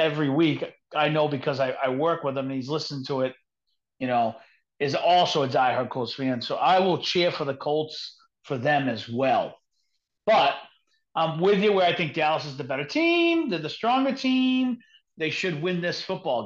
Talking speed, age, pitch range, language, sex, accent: 200 wpm, 40-59, 150-200 Hz, English, male, American